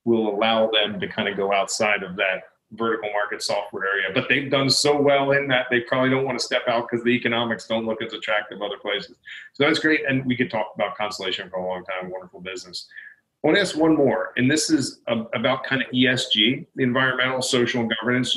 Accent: American